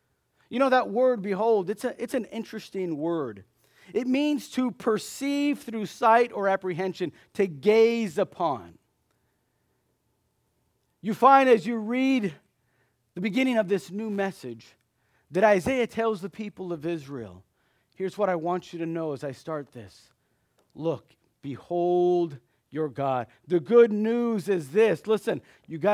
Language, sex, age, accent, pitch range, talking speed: English, male, 40-59, American, 170-230 Hz, 145 wpm